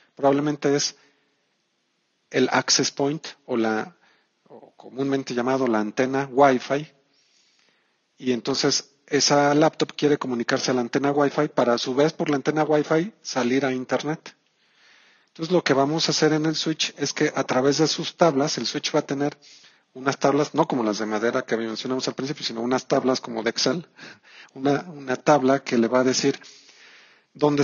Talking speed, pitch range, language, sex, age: 175 wpm, 130-150 Hz, Spanish, male, 40-59